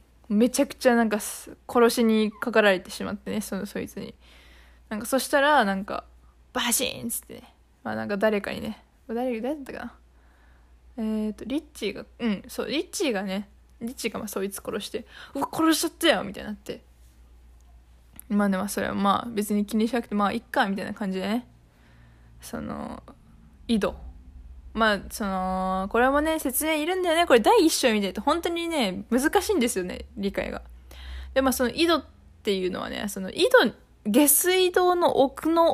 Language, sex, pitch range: Japanese, female, 190-265 Hz